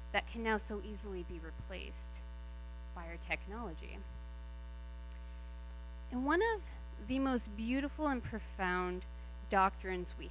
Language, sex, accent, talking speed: English, female, American, 115 wpm